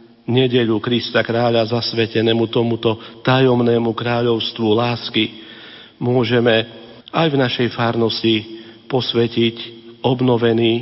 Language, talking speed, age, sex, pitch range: Slovak, 85 wpm, 50-69, male, 115-130 Hz